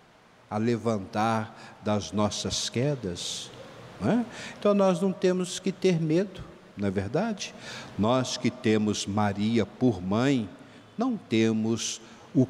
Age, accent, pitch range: 60-79, Brazilian, 105-135 Hz